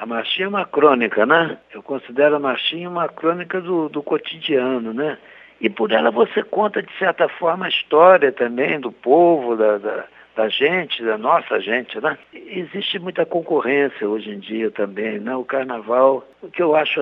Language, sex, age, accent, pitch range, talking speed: Portuguese, male, 60-79, Brazilian, 125-175 Hz, 175 wpm